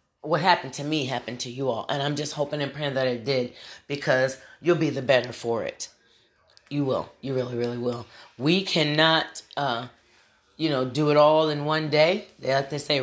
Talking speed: 210 wpm